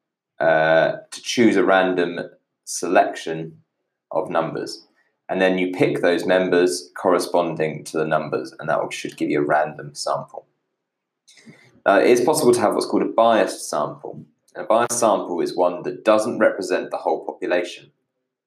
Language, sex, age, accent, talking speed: English, male, 20-39, British, 150 wpm